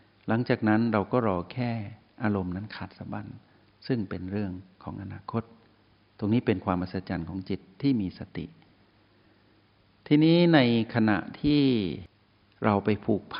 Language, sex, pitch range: Thai, male, 100-120 Hz